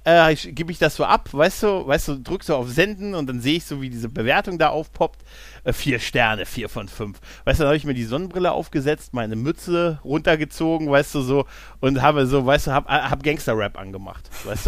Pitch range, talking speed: 125-165 Hz, 230 wpm